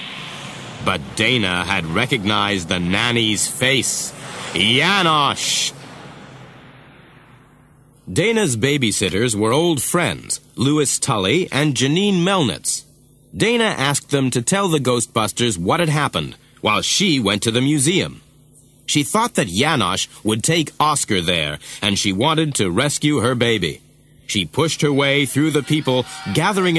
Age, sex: 40-59, male